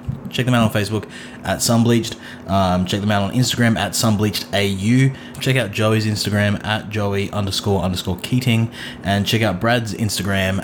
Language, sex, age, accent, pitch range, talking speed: English, male, 20-39, Australian, 90-110 Hz, 170 wpm